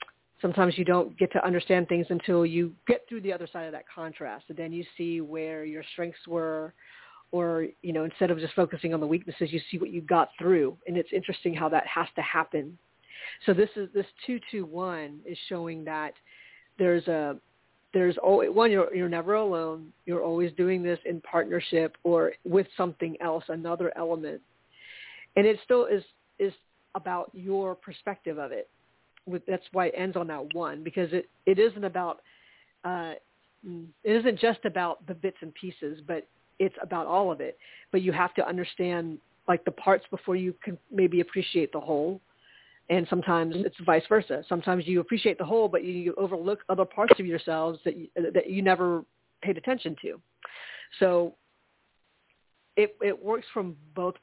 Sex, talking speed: female, 180 wpm